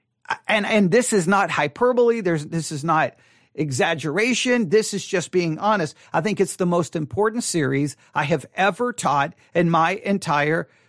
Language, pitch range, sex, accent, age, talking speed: English, 170-245 Hz, male, American, 50-69, 165 wpm